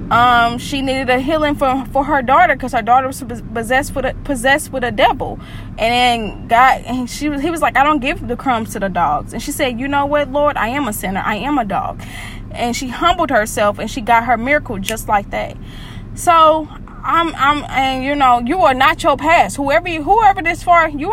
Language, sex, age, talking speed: English, female, 10-29, 225 wpm